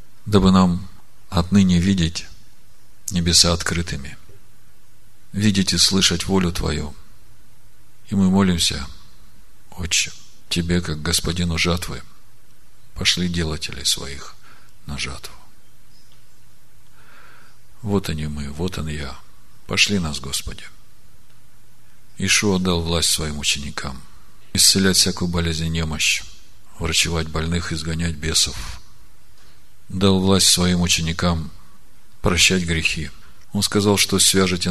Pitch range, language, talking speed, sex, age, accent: 80-95 Hz, Russian, 100 wpm, male, 50-69, native